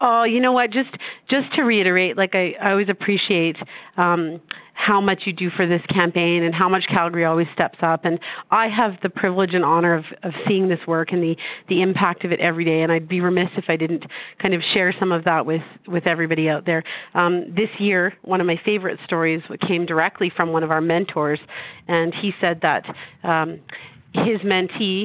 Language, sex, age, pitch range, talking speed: English, female, 40-59, 165-195 Hz, 210 wpm